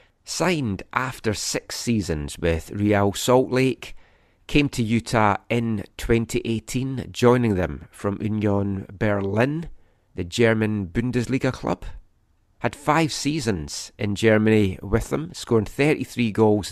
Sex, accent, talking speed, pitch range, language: male, British, 115 wpm, 95-120 Hz, English